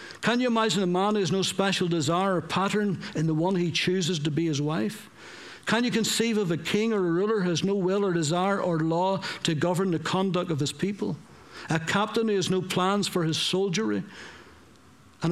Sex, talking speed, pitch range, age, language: male, 215 wpm, 145-190 Hz, 60-79, English